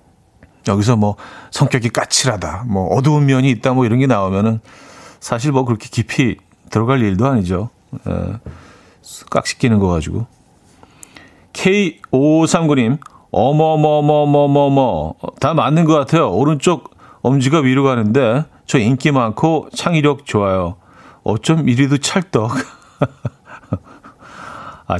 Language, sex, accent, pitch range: Korean, male, native, 100-145 Hz